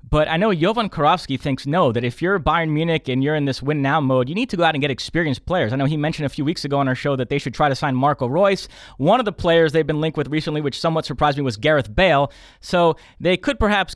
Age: 20-39